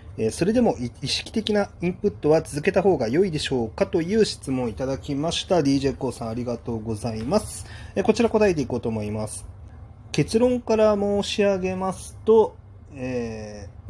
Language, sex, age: Japanese, male, 30-49